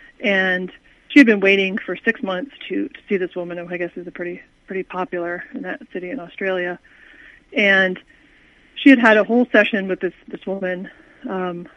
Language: English